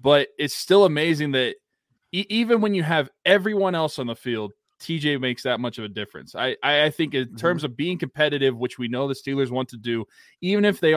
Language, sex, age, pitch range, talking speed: English, male, 20-39, 120-145 Hz, 225 wpm